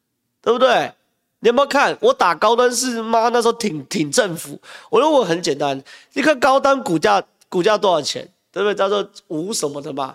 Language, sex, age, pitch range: Chinese, male, 30-49, 150-245 Hz